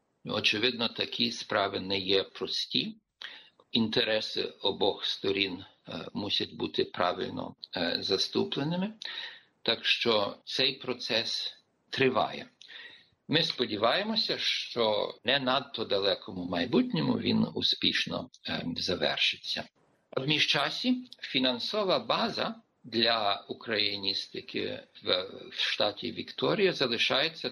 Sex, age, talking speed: male, 50-69, 85 wpm